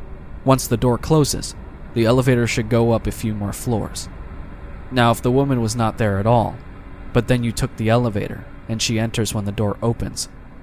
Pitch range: 100-120 Hz